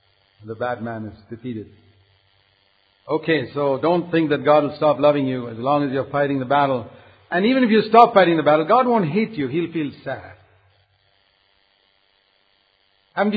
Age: 50-69